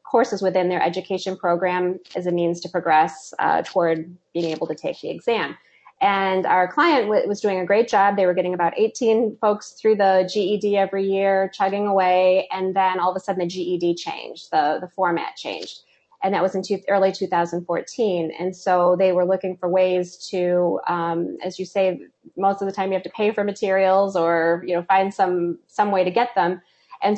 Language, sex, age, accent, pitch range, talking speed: English, female, 20-39, American, 180-205 Hz, 205 wpm